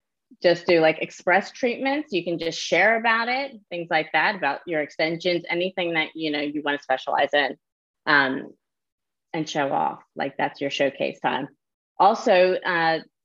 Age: 30-49